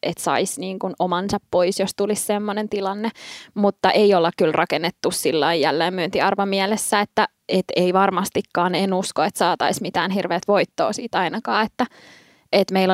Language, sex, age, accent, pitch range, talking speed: Finnish, female, 20-39, native, 175-205 Hz, 160 wpm